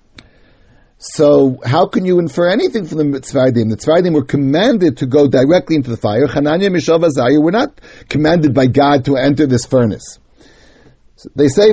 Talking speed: 175 wpm